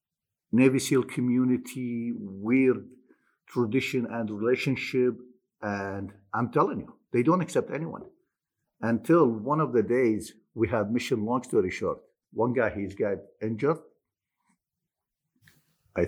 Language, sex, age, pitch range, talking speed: English, male, 50-69, 100-125 Hz, 120 wpm